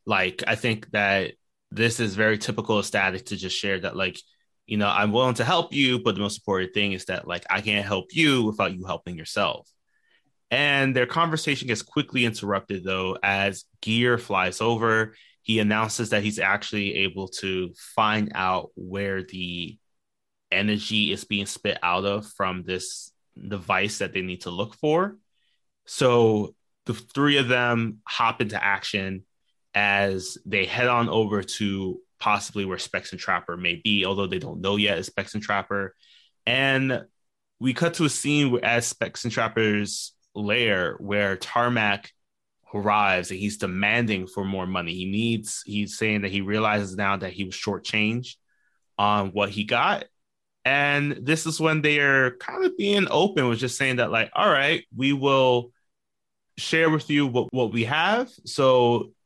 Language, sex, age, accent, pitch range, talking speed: English, male, 20-39, American, 100-125 Hz, 170 wpm